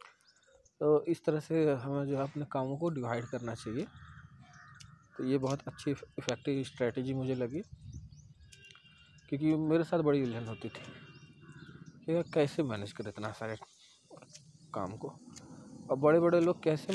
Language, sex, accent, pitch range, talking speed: Hindi, male, native, 125-155 Hz, 150 wpm